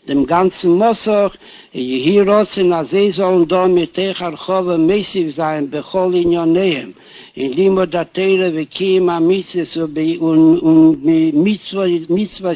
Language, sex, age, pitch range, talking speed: Hebrew, male, 60-79, 165-195 Hz, 95 wpm